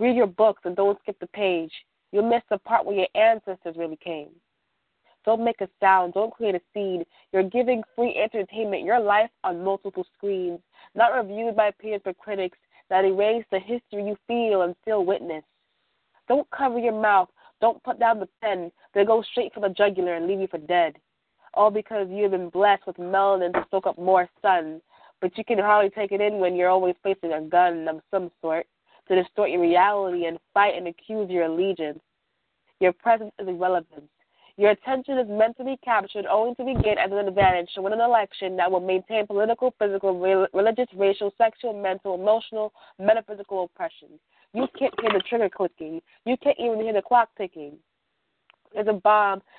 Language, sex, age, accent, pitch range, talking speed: English, female, 20-39, American, 185-220 Hz, 190 wpm